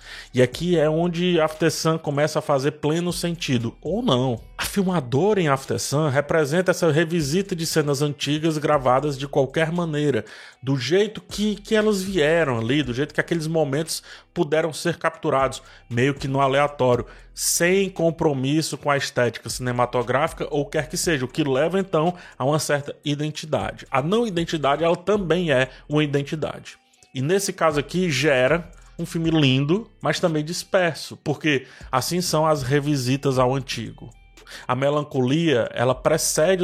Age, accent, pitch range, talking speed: 20-39, Brazilian, 135-170 Hz, 150 wpm